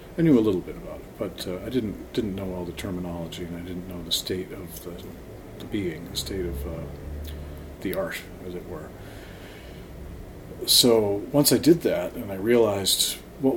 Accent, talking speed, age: American, 195 wpm, 50-69